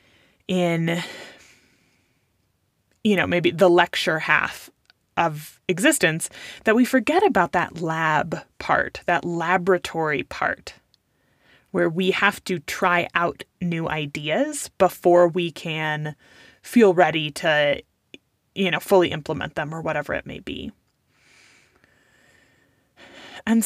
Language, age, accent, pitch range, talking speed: English, 20-39, American, 160-205 Hz, 110 wpm